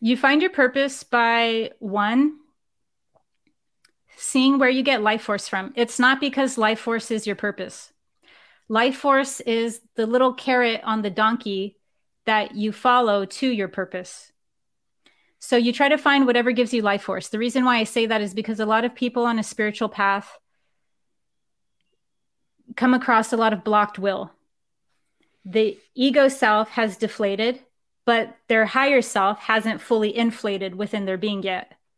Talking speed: 160 wpm